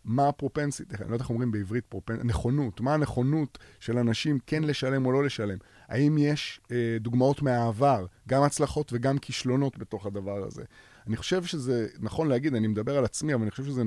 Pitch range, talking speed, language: 110-135 Hz, 190 wpm, Hebrew